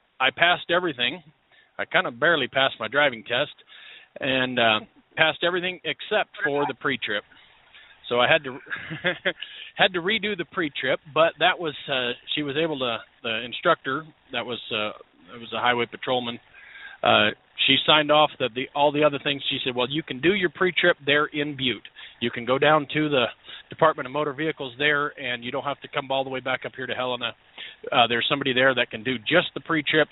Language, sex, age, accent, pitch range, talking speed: English, male, 40-59, American, 130-155 Hz, 205 wpm